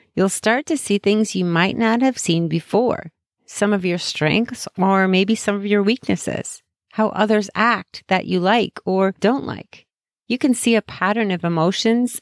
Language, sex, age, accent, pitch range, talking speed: English, female, 30-49, American, 160-220 Hz, 180 wpm